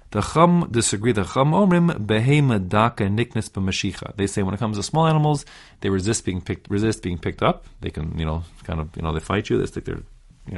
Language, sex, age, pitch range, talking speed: English, male, 30-49, 95-125 Hz, 180 wpm